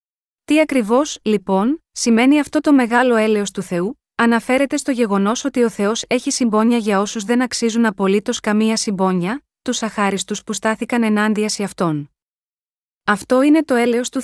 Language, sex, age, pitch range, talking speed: Greek, female, 20-39, 205-245 Hz, 155 wpm